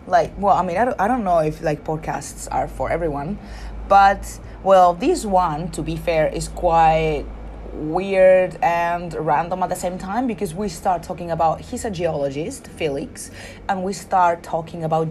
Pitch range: 160-190 Hz